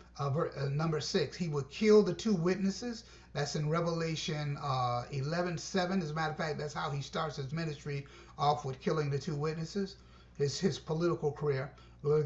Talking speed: 180 wpm